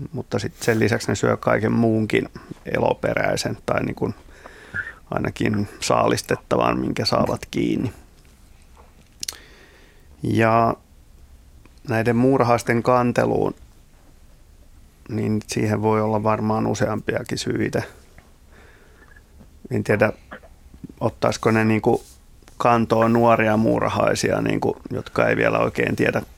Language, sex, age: Finnish, male, 30-49